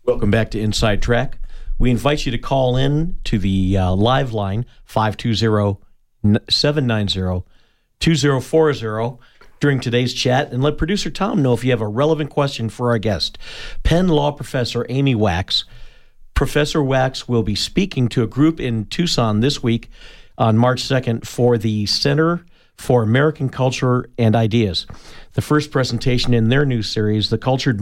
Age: 50-69